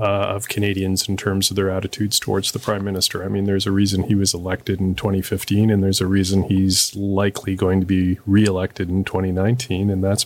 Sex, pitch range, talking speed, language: male, 95-110 Hz, 210 wpm, English